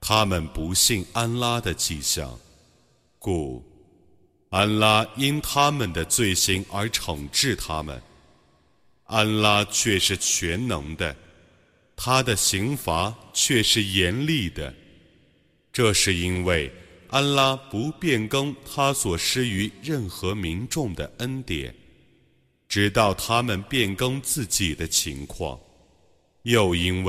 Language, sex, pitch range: Arabic, male, 80-115 Hz